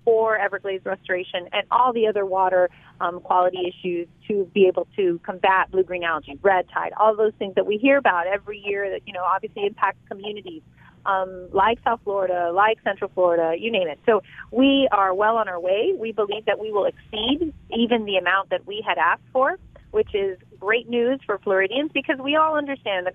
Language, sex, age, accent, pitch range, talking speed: English, female, 30-49, American, 185-235 Hz, 200 wpm